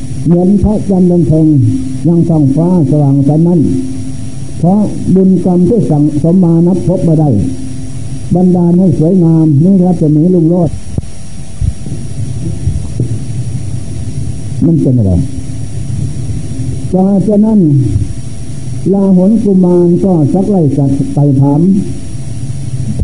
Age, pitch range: 60-79, 130-180 Hz